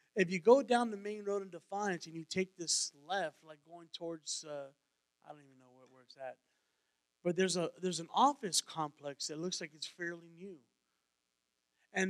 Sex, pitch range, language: male, 155-235 Hz, English